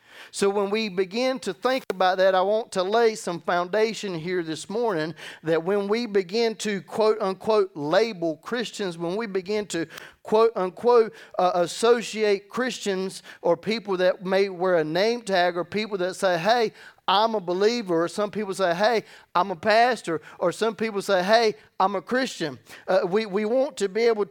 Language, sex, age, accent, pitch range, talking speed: English, male, 40-59, American, 150-210 Hz, 185 wpm